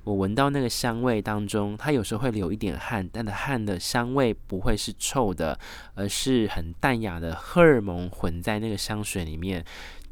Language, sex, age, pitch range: Chinese, male, 20-39, 90-115 Hz